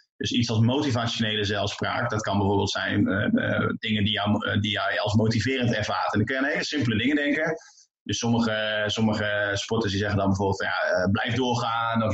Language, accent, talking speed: Dutch, Dutch, 195 wpm